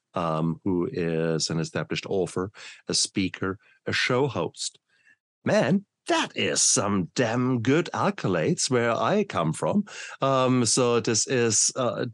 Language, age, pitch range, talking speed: English, 50-69, 100-130 Hz, 135 wpm